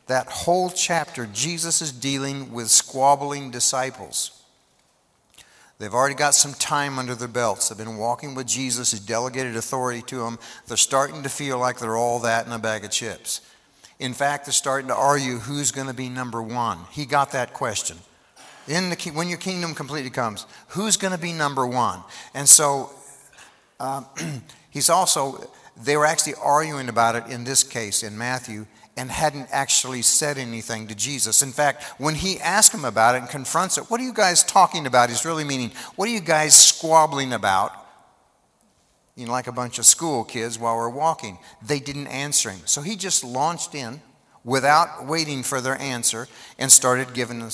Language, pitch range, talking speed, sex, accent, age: English, 120-150 Hz, 185 wpm, male, American, 50-69